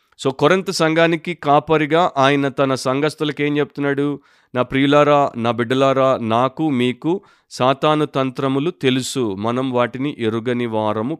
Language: Telugu